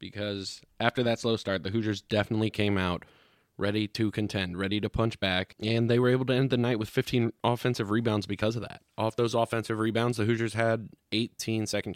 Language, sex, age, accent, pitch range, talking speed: English, male, 20-39, American, 95-115 Hz, 205 wpm